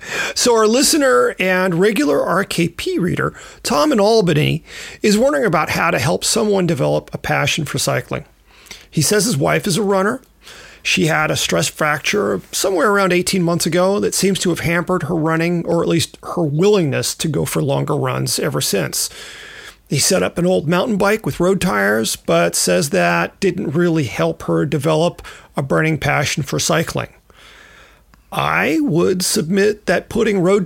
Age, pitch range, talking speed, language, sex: 40-59, 160-200 Hz, 170 wpm, English, male